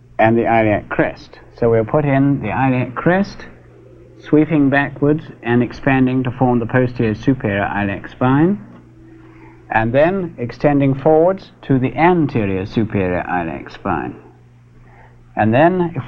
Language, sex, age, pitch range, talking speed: English, male, 60-79, 115-150 Hz, 130 wpm